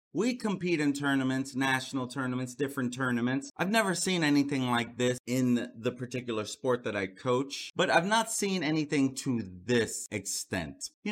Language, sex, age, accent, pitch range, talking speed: English, male, 30-49, American, 130-185 Hz, 160 wpm